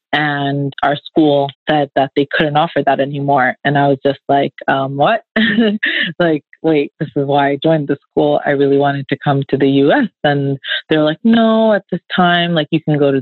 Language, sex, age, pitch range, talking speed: English, female, 20-39, 140-155 Hz, 210 wpm